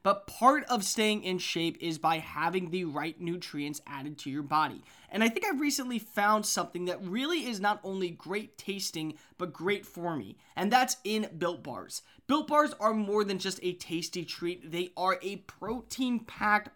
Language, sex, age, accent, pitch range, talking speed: English, male, 20-39, American, 170-220 Hz, 185 wpm